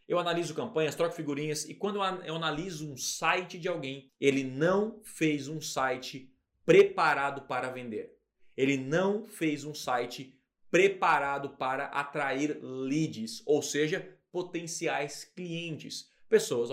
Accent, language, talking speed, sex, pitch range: Brazilian, Portuguese, 125 wpm, male, 155-225 Hz